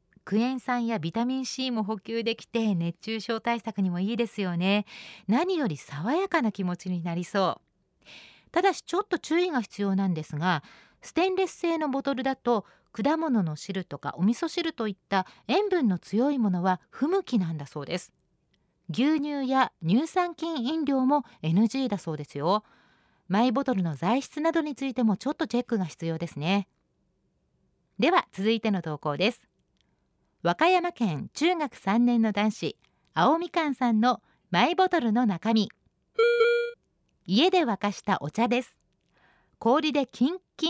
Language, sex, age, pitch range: Japanese, female, 40-59, 190-285 Hz